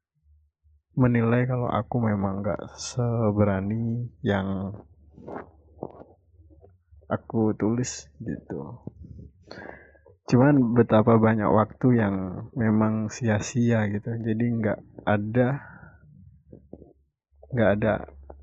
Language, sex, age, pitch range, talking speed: Indonesian, male, 20-39, 95-115 Hz, 75 wpm